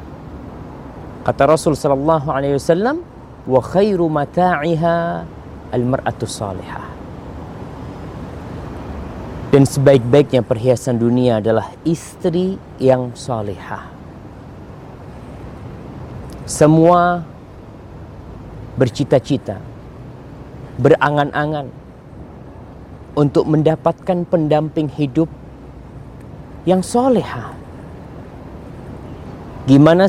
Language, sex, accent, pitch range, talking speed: English, male, Indonesian, 125-185 Hz, 45 wpm